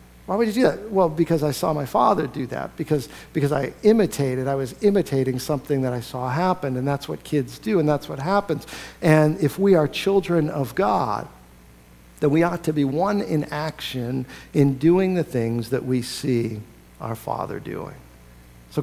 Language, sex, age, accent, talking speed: English, male, 50-69, American, 190 wpm